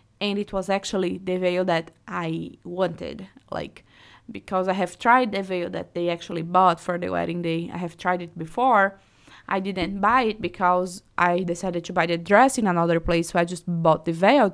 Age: 20-39